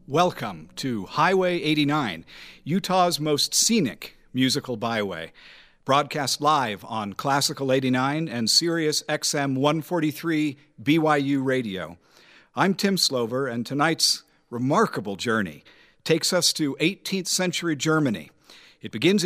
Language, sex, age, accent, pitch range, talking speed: English, male, 50-69, American, 125-170 Hz, 110 wpm